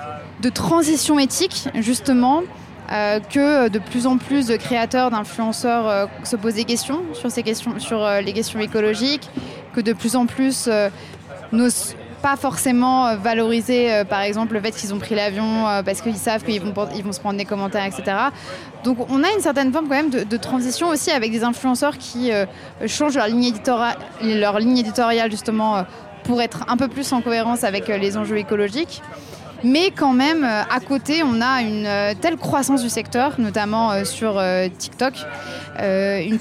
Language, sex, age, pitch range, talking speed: French, female, 20-39, 215-265 Hz, 185 wpm